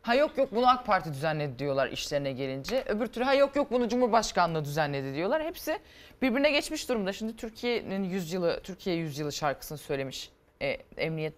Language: Turkish